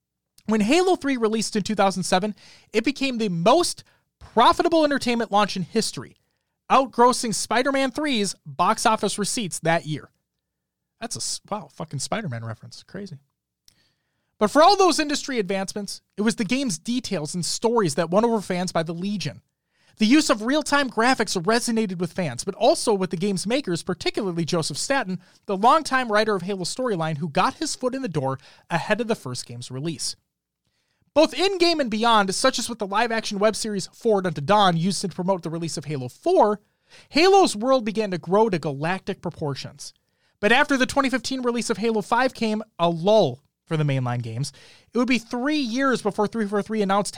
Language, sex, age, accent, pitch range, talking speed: English, male, 30-49, American, 170-240 Hz, 175 wpm